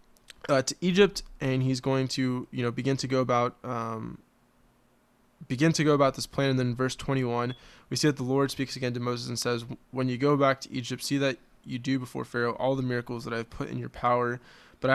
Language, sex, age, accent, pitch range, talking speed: English, male, 20-39, American, 120-135 Hz, 230 wpm